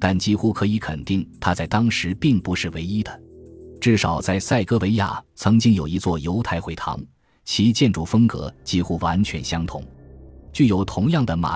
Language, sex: Chinese, male